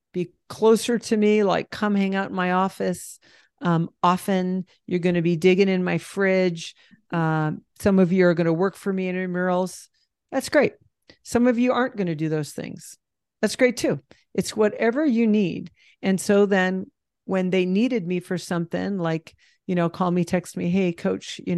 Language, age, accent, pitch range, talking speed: English, 40-59, American, 165-190 Hz, 195 wpm